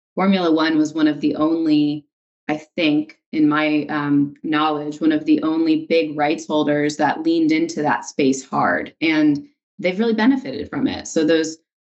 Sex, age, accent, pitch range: female, 20-39, American, 150-250 Hz